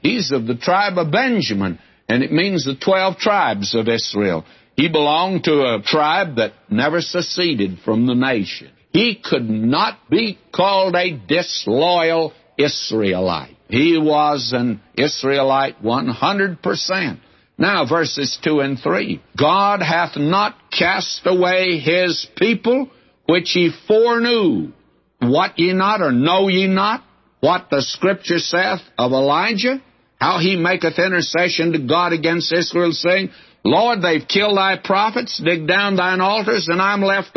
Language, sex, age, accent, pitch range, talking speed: English, male, 60-79, American, 140-185 Hz, 140 wpm